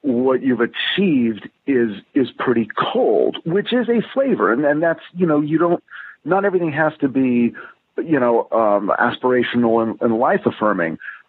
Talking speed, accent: 165 wpm, American